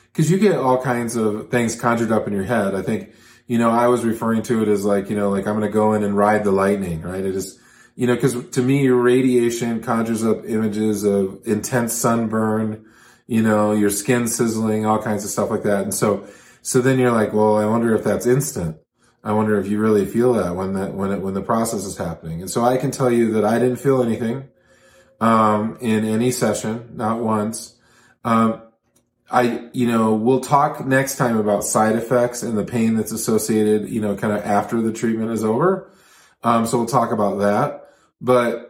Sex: male